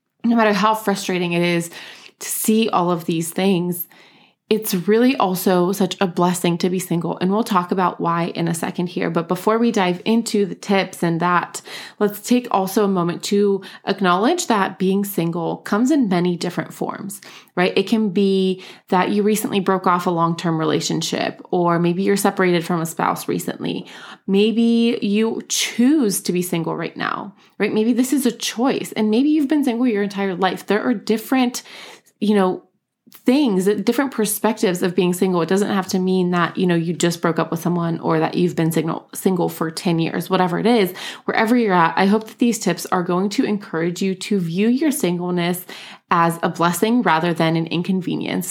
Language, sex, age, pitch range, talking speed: English, female, 20-39, 175-215 Hz, 195 wpm